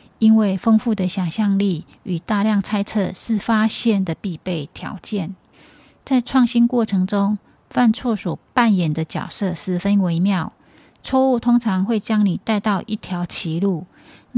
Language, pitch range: Chinese, 180-220 Hz